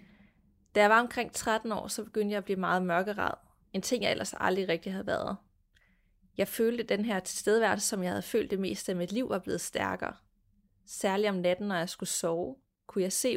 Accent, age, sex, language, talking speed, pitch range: native, 30-49, female, Danish, 215 wpm, 185-220 Hz